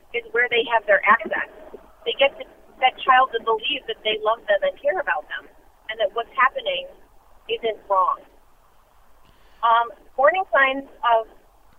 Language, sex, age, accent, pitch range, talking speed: English, female, 30-49, American, 220-280 Hz, 160 wpm